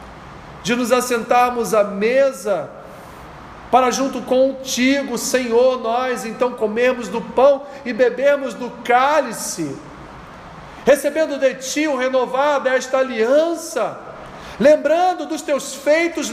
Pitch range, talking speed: 210-285 Hz, 105 wpm